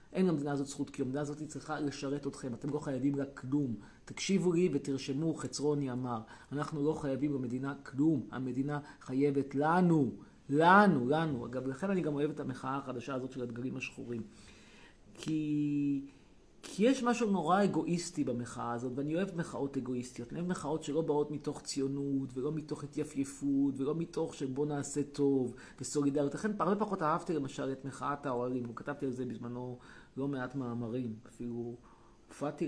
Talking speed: 160 wpm